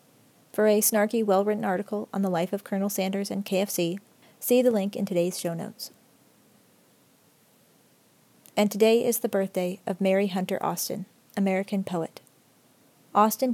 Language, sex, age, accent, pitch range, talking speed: English, female, 30-49, American, 180-210 Hz, 140 wpm